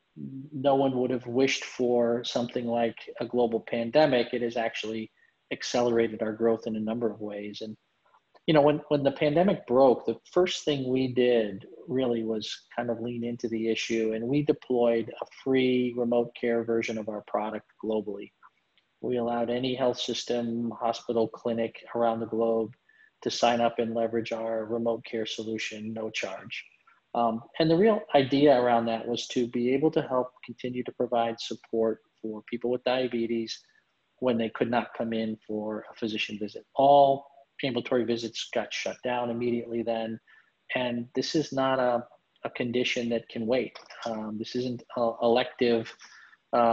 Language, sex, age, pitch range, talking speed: English, male, 40-59, 115-125 Hz, 170 wpm